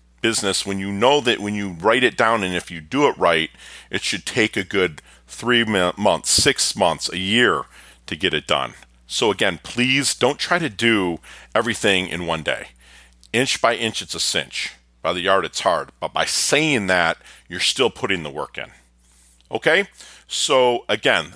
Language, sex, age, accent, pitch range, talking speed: English, male, 40-59, American, 80-120 Hz, 185 wpm